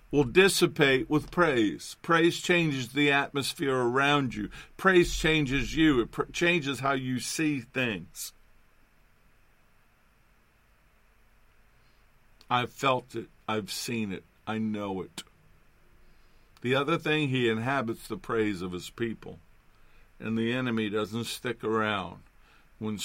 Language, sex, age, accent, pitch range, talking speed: English, male, 50-69, American, 110-145 Hz, 115 wpm